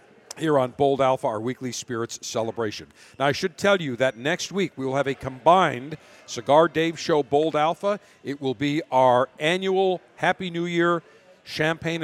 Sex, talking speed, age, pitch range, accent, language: male, 175 wpm, 50-69, 135-170 Hz, American, English